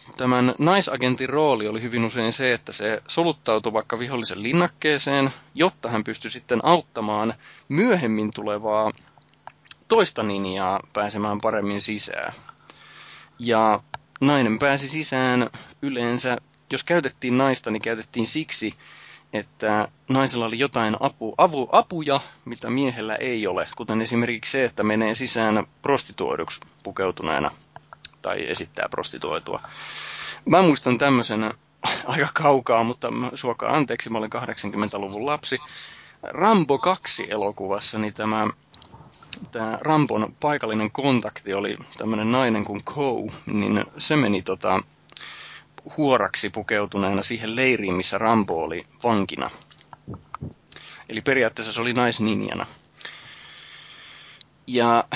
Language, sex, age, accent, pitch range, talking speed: Finnish, male, 20-39, native, 110-135 Hz, 110 wpm